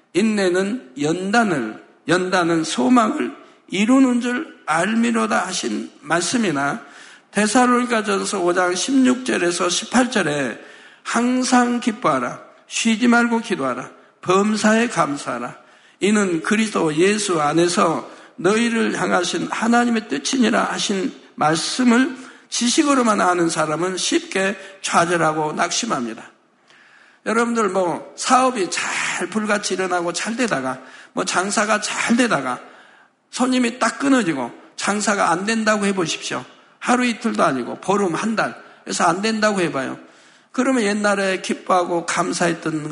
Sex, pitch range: male, 180-245 Hz